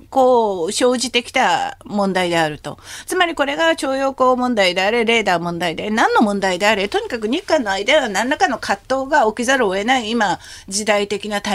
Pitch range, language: 195-295 Hz, Japanese